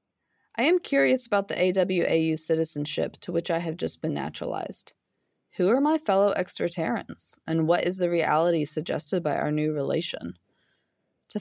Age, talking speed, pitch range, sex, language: 20-39, 160 wpm, 155-200 Hz, female, English